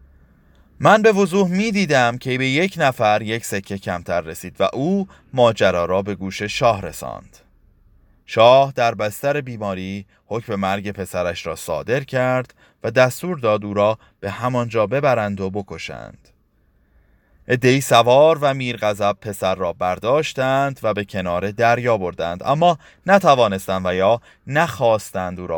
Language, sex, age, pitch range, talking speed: Persian, male, 30-49, 95-140 Hz, 140 wpm